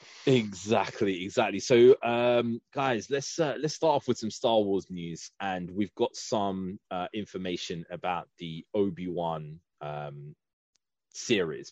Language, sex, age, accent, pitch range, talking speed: English, male, 20-39, British, 85-110 Hz, 135 wpm